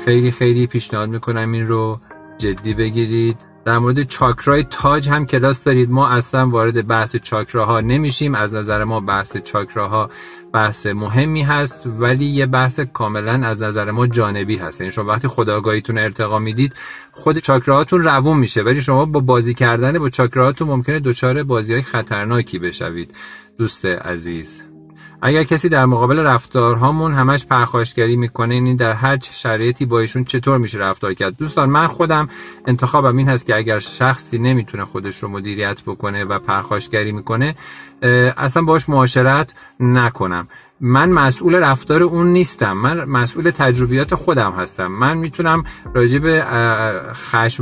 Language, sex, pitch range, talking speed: Persian, male, 115-140 Hz, 145 wpm